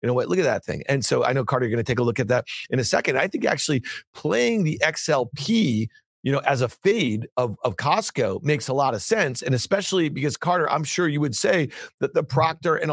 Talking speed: 250 wpm